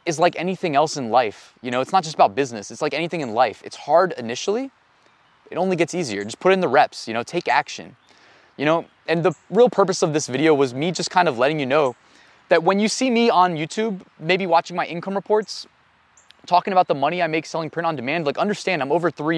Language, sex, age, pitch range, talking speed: English, male, 20-39, 140-185 Hz, 240 wpm